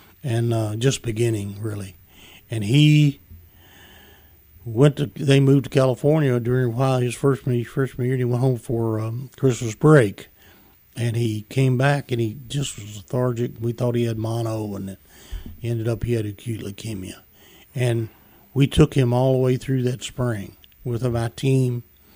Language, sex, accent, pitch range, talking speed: English, male, American, 105-125 Hz, 175 wpm